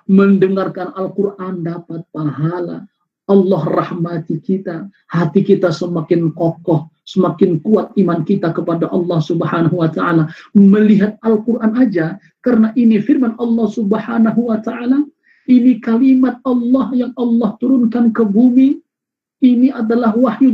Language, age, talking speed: Indonesian, 40-59, 120 wpm